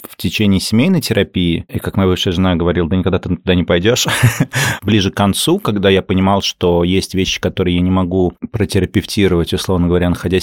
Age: 30-49